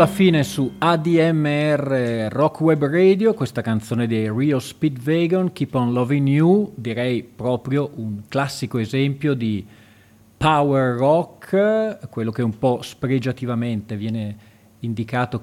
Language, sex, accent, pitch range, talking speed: Italian, male, native, 110-145 Hz, 120 wpm